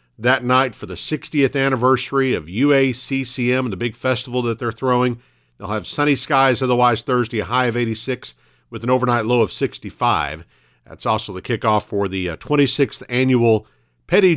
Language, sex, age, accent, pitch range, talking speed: English, male, 50-69, American, 105-130 Hz, 165 wpm